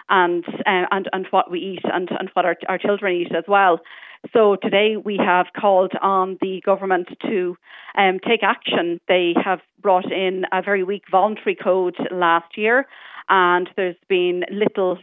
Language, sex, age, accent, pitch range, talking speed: English, female, 40-59, Irish, 180-210 Hz, 170 wpm